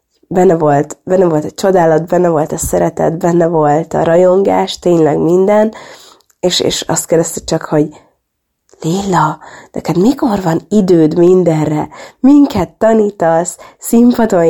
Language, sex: Hungarian, female